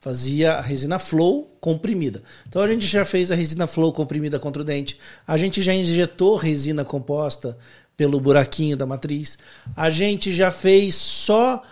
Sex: male